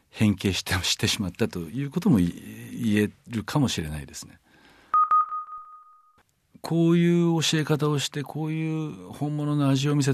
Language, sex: Japanese, male